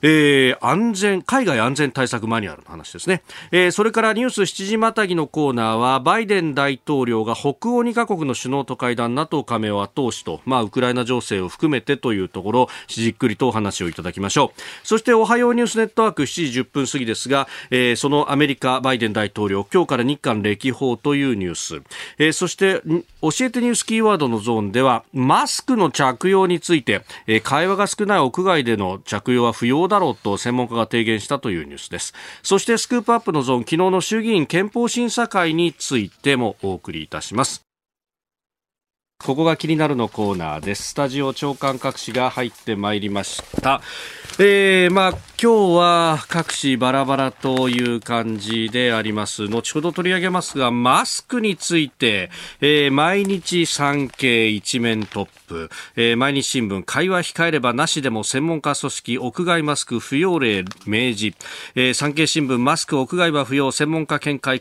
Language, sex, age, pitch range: Japanese, male, 40-59, 115-170 Hz